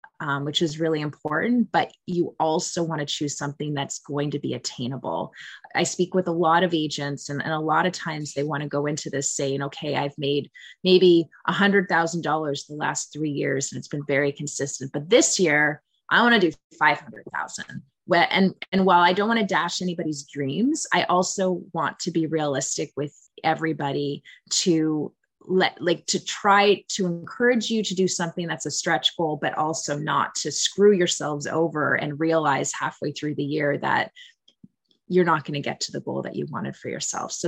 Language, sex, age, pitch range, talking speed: English, female, 20-39, 145-180 Hz, 195 wpm